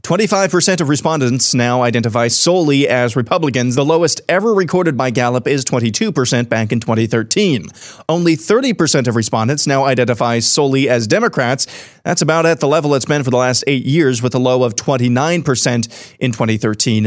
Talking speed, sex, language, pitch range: 160 wpm, male, English, 130-170 Hz